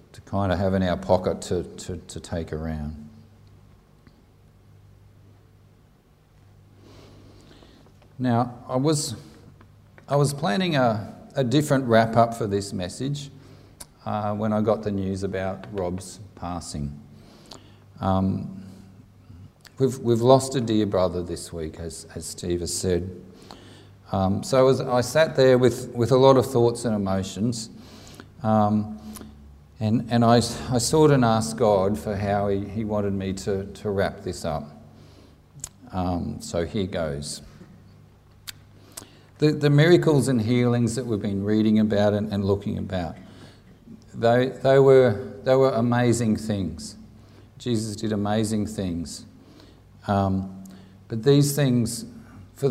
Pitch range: 95-120 Hz